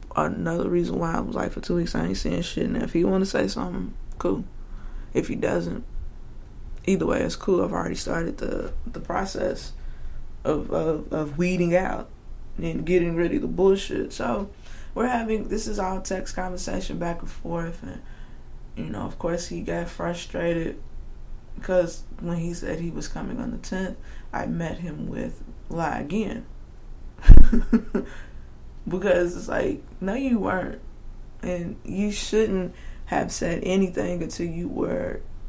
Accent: American